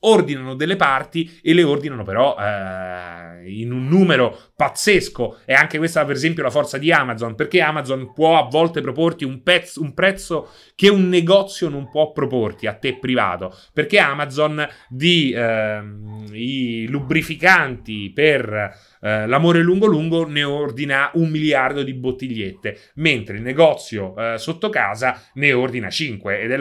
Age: 30-49